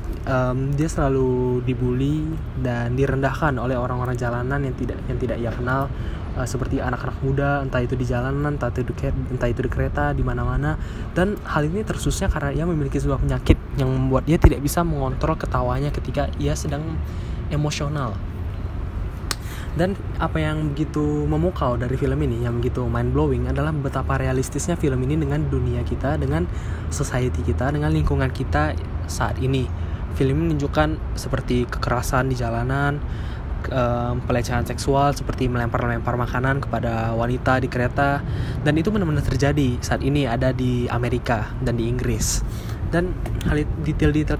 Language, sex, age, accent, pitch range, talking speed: Indonesian, male, 20-39, native, 115-135 Hz, 145 wpm